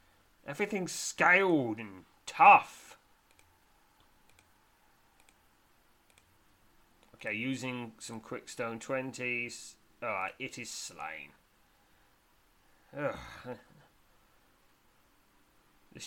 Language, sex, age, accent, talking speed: English, male, 30-49, British, 50 wpm